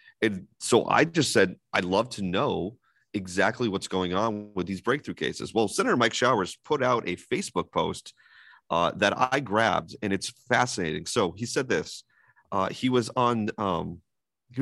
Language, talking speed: English, 175 wpm